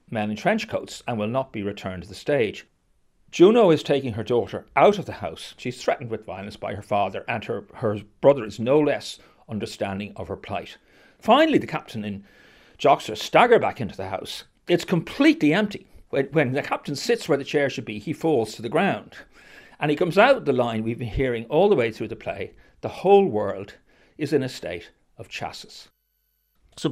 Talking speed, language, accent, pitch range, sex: 205 wpm, English, British, 105-145 Hz, male